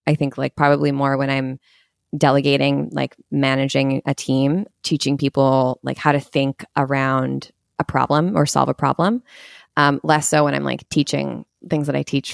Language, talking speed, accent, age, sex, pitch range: English, 175 wpm, American, 20-39, female, 140-165 Hz